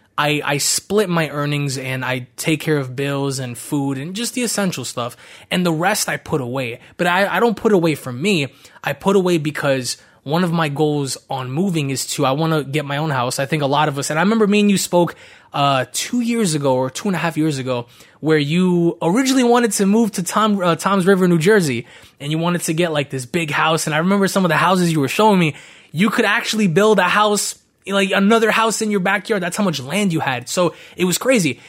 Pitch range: 135-180 Hz